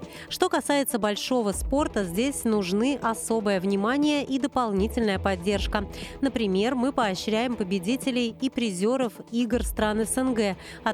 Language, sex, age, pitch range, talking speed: Russian, female, 30-49, 205-255 Hz, 115 wpm